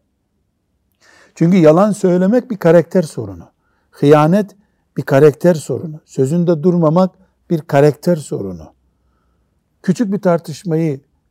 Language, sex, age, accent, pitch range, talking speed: Turkish, male, 60-79, native, 130-180 Hz, 95 wpm